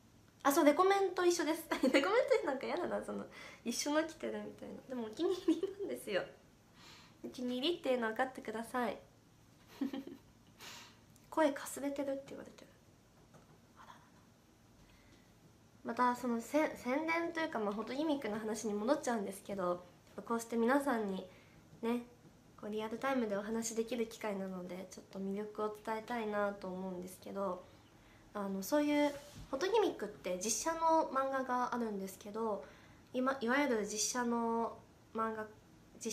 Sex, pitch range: female, 200-265 Hz